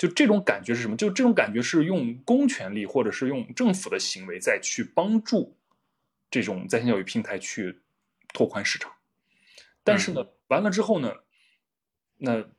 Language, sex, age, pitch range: Chinese, male, 20-39, 120-185 Hz